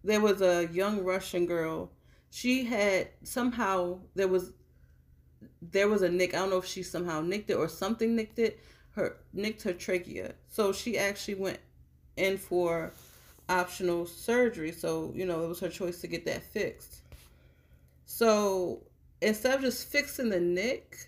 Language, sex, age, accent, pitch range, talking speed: English, female, 30-49, American, 160-210 Hz, 160 wpm